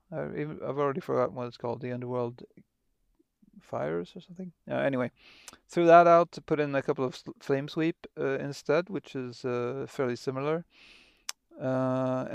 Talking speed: 155 wpm